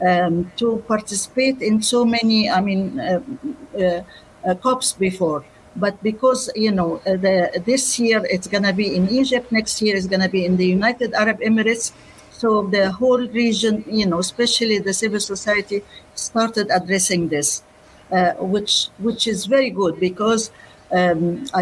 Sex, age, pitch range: female, 50-69, 185-235 Hz